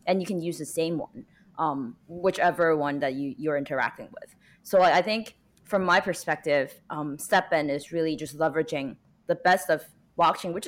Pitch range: 150-190 Hz